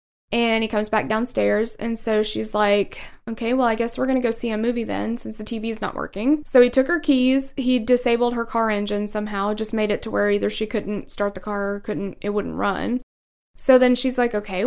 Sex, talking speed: female, 235 wpm